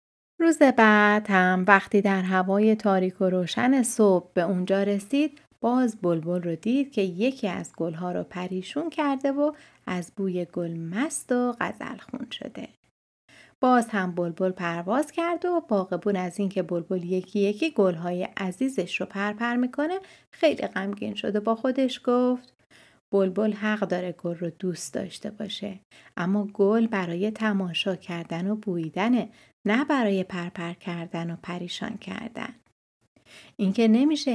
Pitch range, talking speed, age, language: 185-240 Hz, 145 wpm, 30-49, Persian